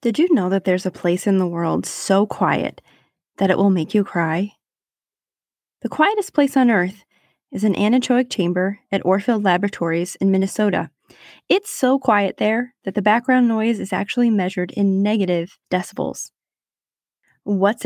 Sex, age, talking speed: female, 20-39, 160 wpm